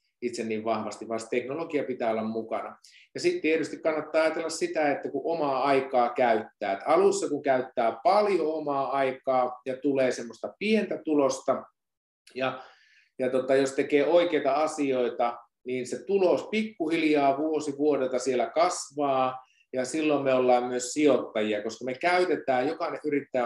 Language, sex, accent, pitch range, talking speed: Finnish, male, native, 125-160 Hz, 145 wpm